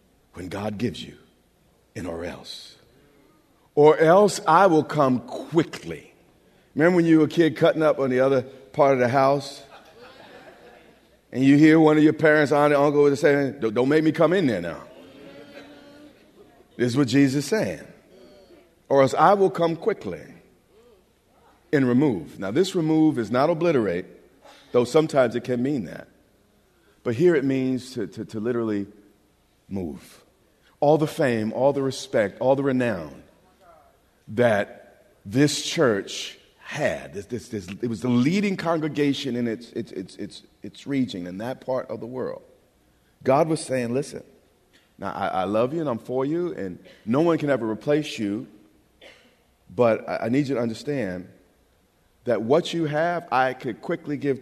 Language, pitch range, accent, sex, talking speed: English, 120-155 Hz, American, male, 160 wpm